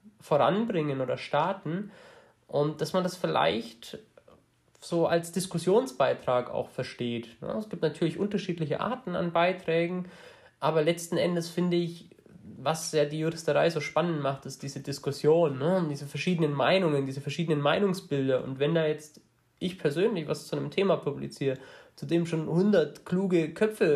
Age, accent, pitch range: 20-39, German, 150-180 Hz